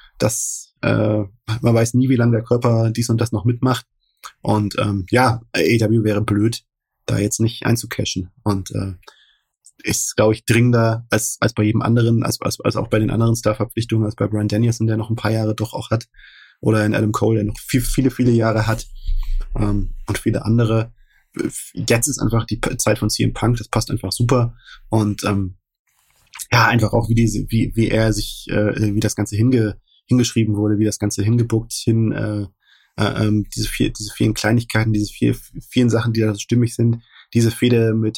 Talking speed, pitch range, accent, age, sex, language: 195 wpm, 105-120 Hz, German, 20-39, male, German